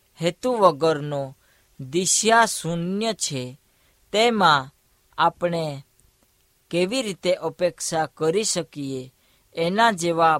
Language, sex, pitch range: Hindi, female, 145-195 Hz